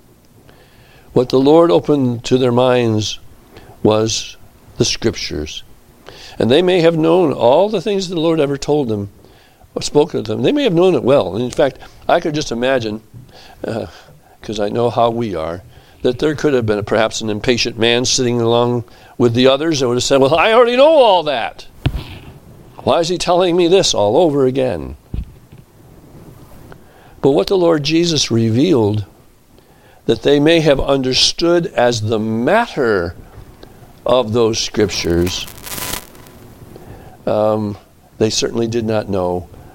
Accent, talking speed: American, 155 wpm